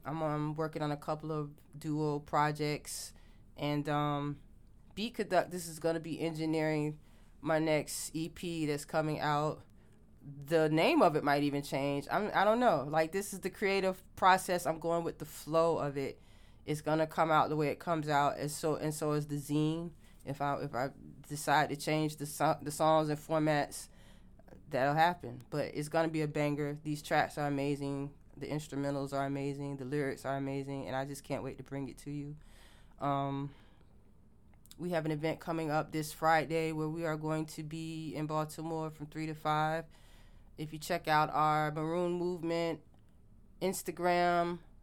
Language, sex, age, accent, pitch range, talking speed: English, female, 20-39, American, 140-160 Hz, 185 wpm